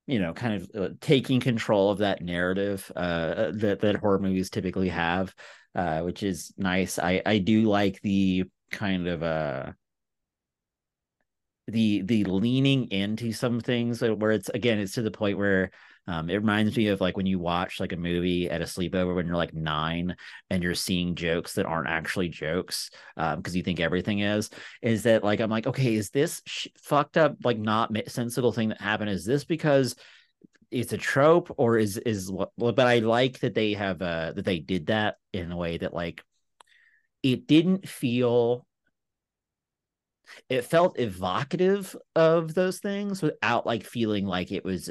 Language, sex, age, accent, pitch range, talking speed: English, male, 30-49, American, 90-125 Hz, 175 wpm